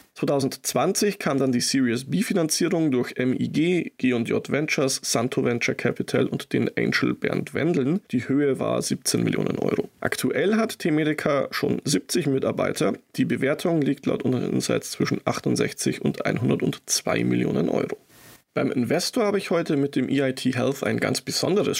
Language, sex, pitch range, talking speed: German, male, 130-155 Hz, 150 wpm